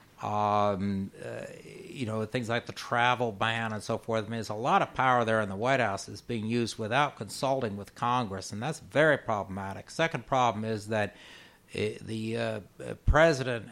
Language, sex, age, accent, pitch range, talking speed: English, male, 60-79, American, 115-135 Hz, 180 wpm